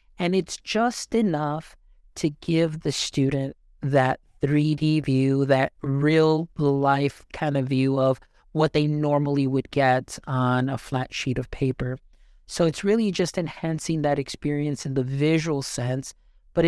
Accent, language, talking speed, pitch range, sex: American, English, 150 wpm, 130-150 Hz, male